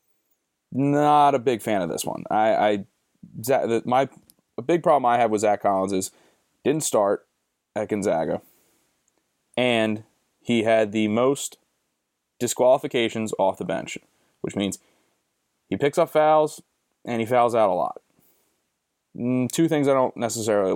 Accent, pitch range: American, 105-120 Hz